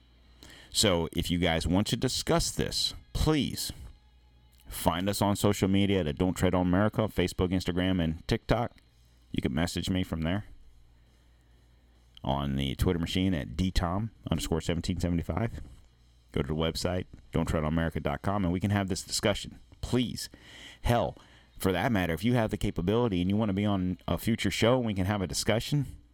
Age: 40-59